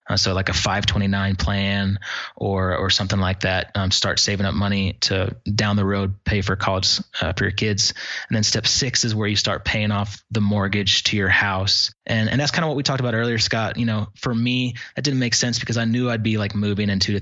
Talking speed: 245 wpm